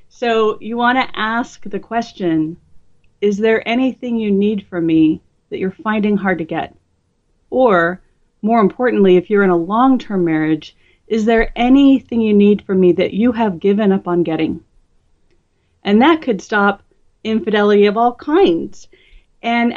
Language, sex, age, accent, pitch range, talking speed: English, female, 40-59, American, 175-215 Hz, 155 wpm